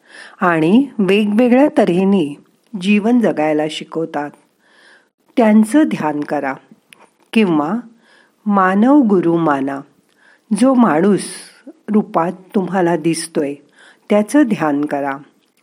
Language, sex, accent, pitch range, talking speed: Marathi, female, native, 165-240 Hz, 80 wpm